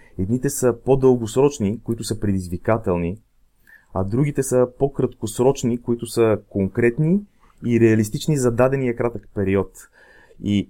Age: 30-49